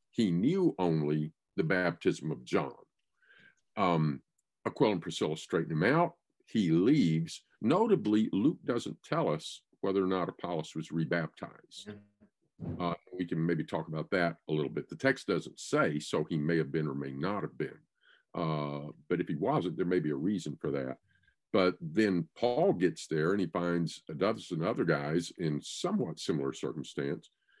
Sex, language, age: male, English, 50-69